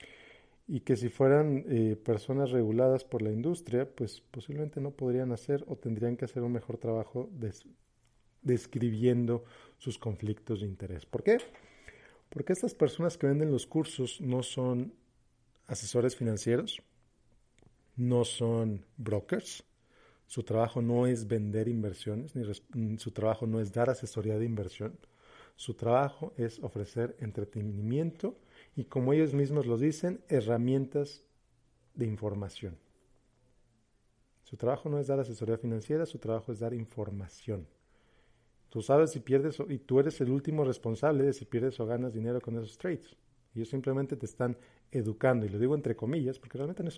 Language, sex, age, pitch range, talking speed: Spanish, male, 40-59, 115-135 Hz, 155 wpm